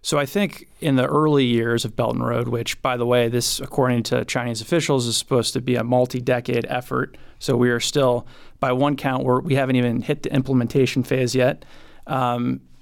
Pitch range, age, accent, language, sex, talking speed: 120-135 Hz, 20-39, American, English, male, 205 wpm